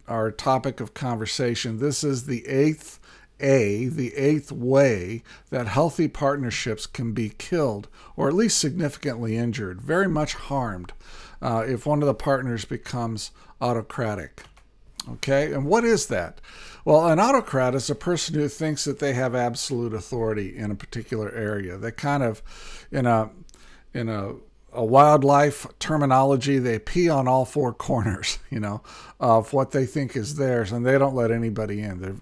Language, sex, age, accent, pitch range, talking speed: English, male, 50-69, American, 115-145 Hz, 165 wpm